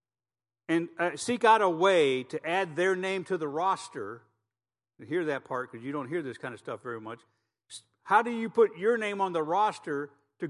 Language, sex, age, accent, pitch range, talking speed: English, male, 50-69, American, 130-190 Hz, 205 wpm